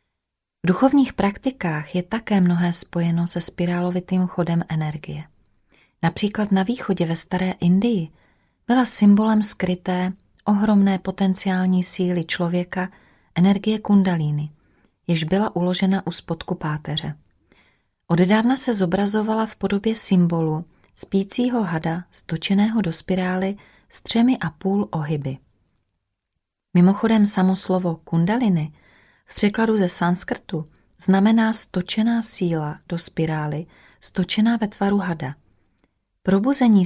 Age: 30-49